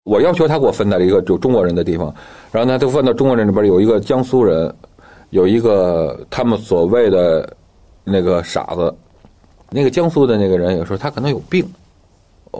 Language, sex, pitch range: Chinese, male, 90-135 Hz